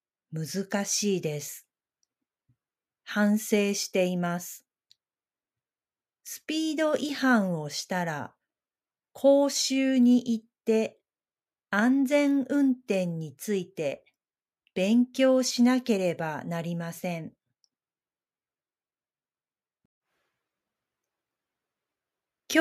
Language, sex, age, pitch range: Japanese, female, 40-59, 175-255 Hz